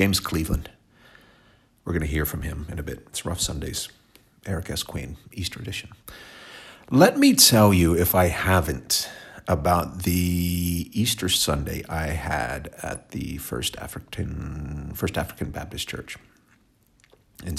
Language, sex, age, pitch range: English, male, 40-59, 80-100 Hz